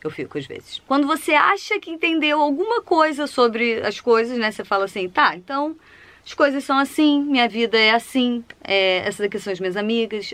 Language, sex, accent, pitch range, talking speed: Portuguese, female, Brazilian, 195-250 Hz, 205 wpm